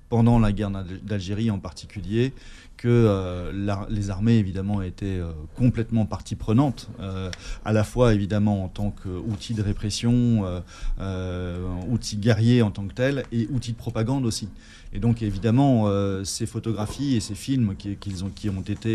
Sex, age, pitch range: male, 30-49, 100-120 Hz